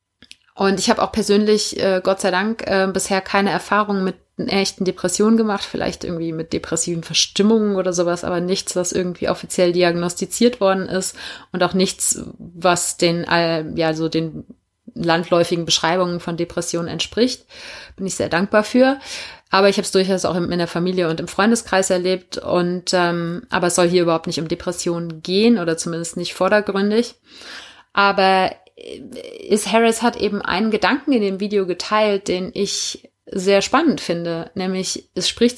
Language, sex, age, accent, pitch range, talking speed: German, female, 30-49, German, 175-225 Hz, 165 wpm